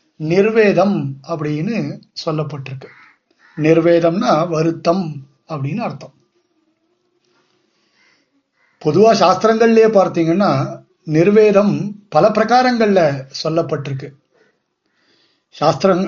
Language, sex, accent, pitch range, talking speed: Tamil, male, native, 155-210 Hz, 55 wpm